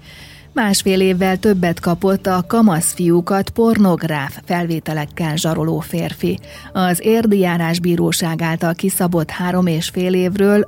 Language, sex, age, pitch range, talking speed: Hungarian, female, 30-49, 160-190 Hz, 110 wpm